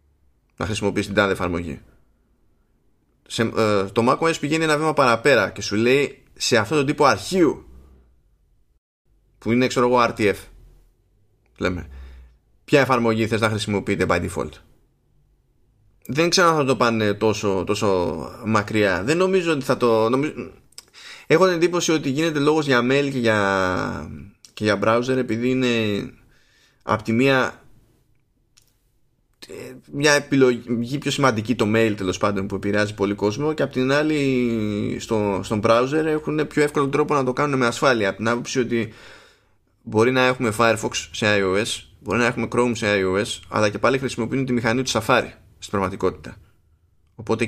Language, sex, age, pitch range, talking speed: Greek, male, 20-39, 100-125 Hz, 155 wpm